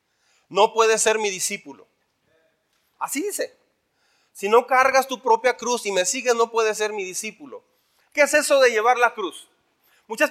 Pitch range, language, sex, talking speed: 185-250 Hz, Spanish, male, 170 wpm